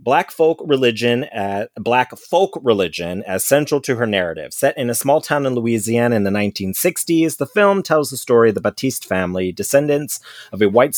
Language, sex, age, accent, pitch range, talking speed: English, male, 30-49, American, 100-140 Hz, 190 wpm